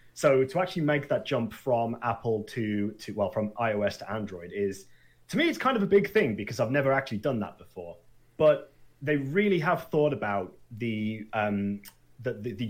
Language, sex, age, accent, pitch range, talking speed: English, male, 30-49, British, 100-130 Hz, 190 wpm